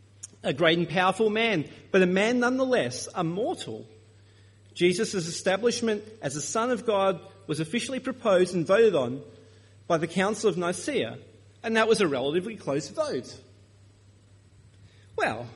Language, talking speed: English, 145 wpm